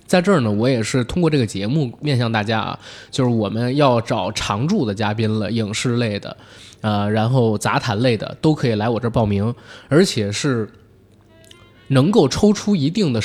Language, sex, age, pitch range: Chinese, male, 20-39, 110-145 Hz